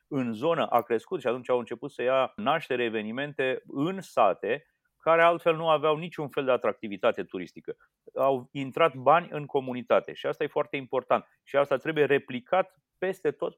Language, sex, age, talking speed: Romanian, male, 30-49, 170 wpm